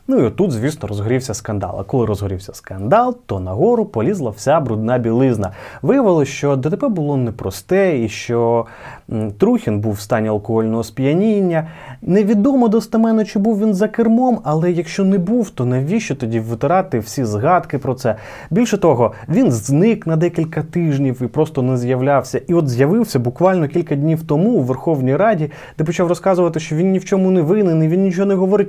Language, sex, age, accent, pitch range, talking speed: Ukrainian, male, 20-39, native, 120-175 Hz, 180 wpm